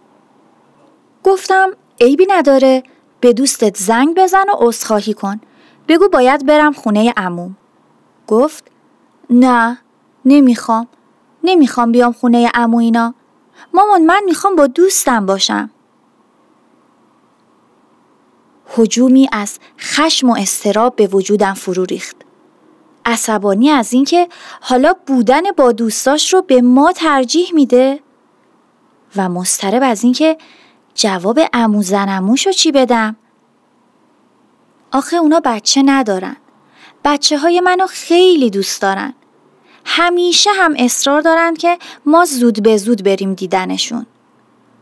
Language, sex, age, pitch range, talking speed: Persian, female, 30-49, 220-315 Hz, 105 wpm